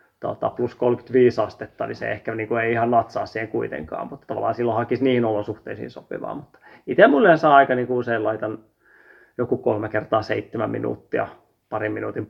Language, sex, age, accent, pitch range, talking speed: Finnish, male, 30-49, native, 110-125 Hz, 180 wpm